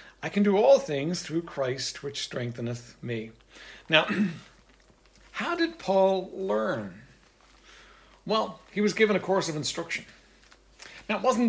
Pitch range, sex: 140-200 Hz, male